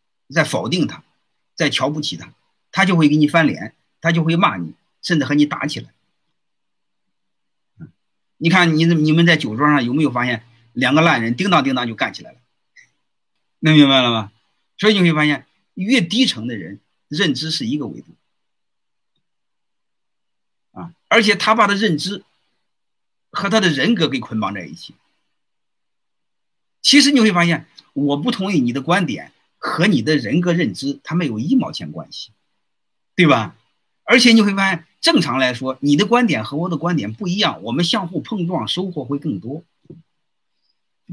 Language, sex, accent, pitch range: Chinese, male, native, 145-200 Hz